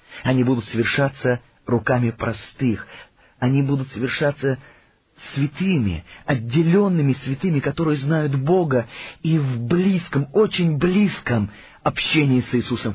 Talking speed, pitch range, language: 100 wpm, 120-160 Hz, Russian